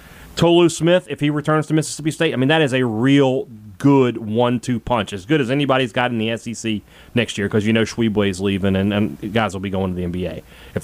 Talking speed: 235 wpm